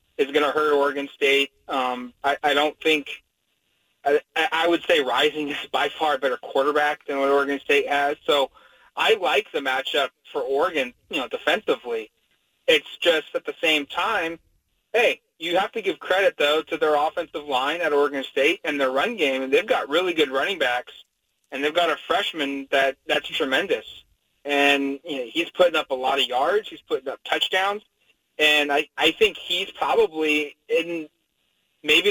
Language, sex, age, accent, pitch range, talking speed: English, male, 30-49, American, 145-215 Hz, 185 wpm